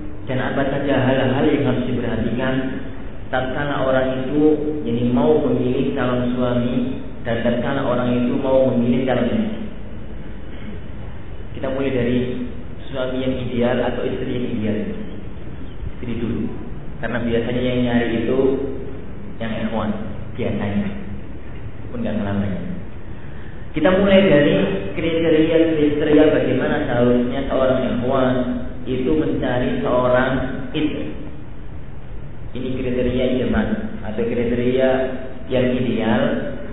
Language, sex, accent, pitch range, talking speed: Indonesian, male, native, 115-130 Hz, 105 wpm